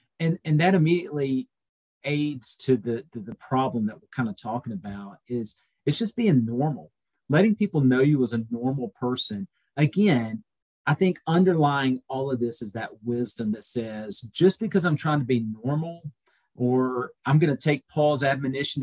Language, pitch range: English, 120-155 Hz